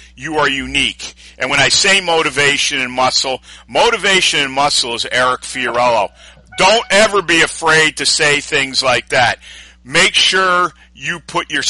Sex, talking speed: male, 155 wpm